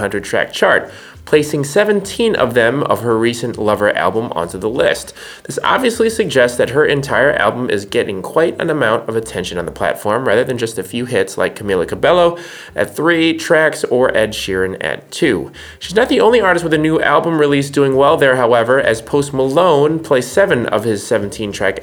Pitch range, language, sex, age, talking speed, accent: 110-155 Hz, English, male, 20-39, 195 wpm, American